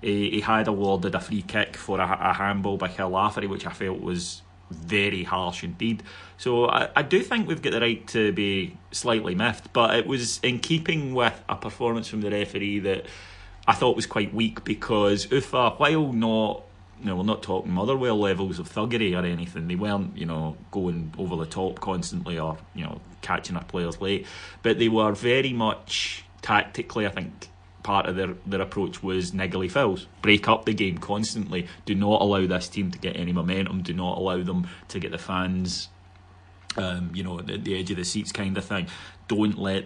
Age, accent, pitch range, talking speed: 30-49, British, 90-105 Hz, 200 wpm